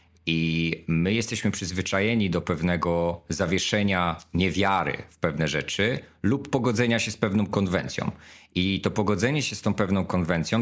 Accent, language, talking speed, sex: native, Polish, 140 wpm, male